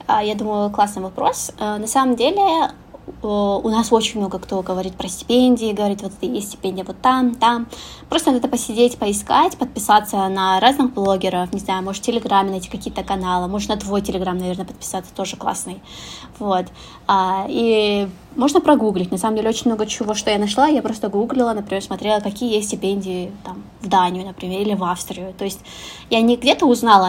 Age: 20-39